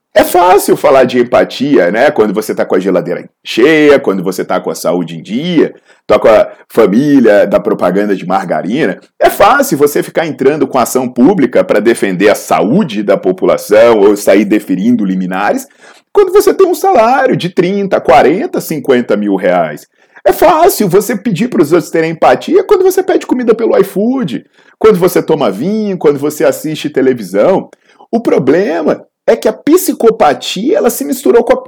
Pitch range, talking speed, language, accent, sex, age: 185-270 Hz, 170 wpm, Portuguese, Brazilian, male, 40-59